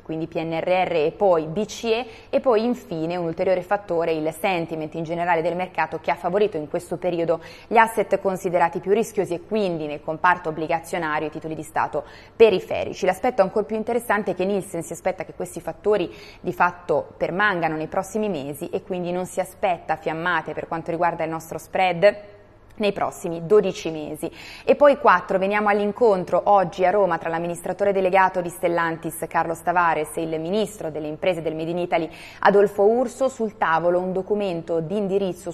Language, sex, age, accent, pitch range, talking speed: Italian, female, 20-39, native, 165-200 Hz, 175 wpm